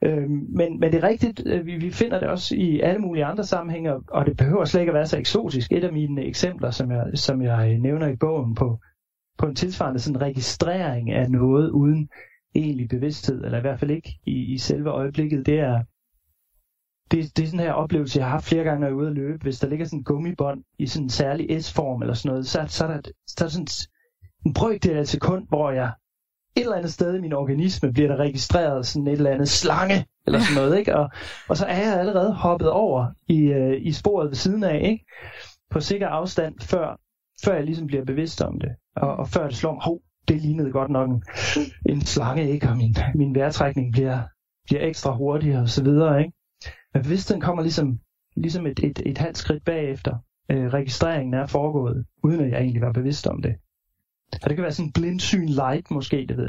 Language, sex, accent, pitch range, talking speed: Danish, male, native, 130-160 Hz, 220 wpm